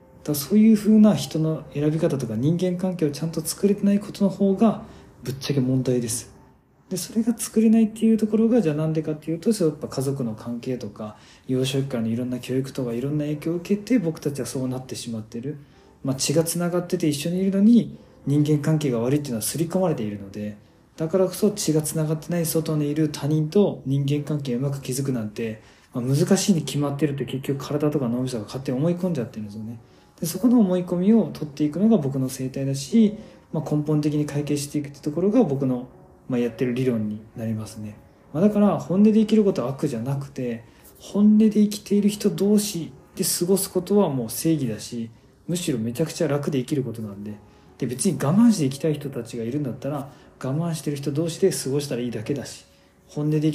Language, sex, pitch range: Japanese, male, 125-180 Hz